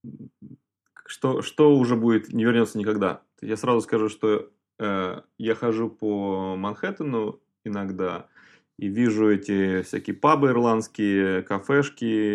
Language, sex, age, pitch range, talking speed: Russian, male, 20-39, 100-125 Hz, 115 wpm